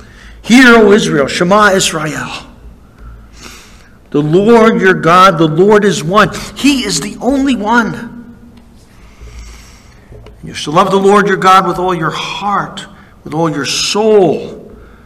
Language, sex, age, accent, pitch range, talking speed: English, male, 60-79, American, 155-220 Hz, 135 wpm